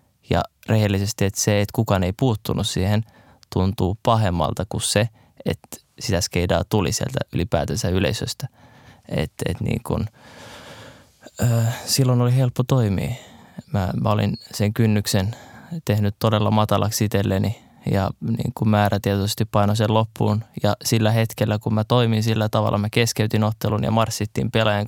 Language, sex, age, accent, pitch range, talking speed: Finnish, male, 20-39, native, 100-115 Hz, 125 wpm